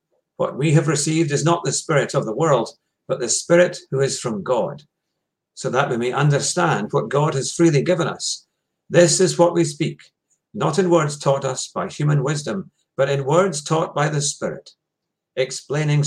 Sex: male